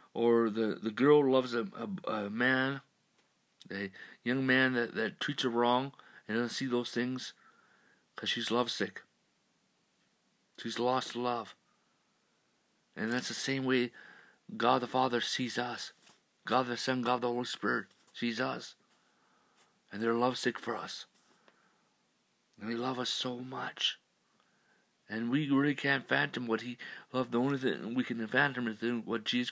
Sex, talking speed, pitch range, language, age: male, 150 wpm, 120-130 Hz, English, 50-69